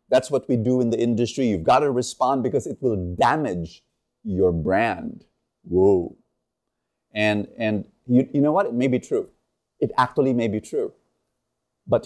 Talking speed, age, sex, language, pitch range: 170 wpm, 30-49, male, English, 110-160 Hz